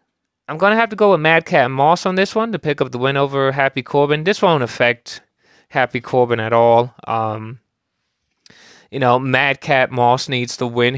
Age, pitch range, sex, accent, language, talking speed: 20-39, 120-145 Hz, male, American, English, 200 wpm